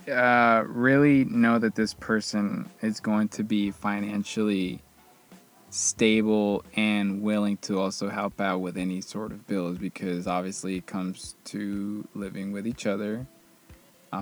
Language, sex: English, male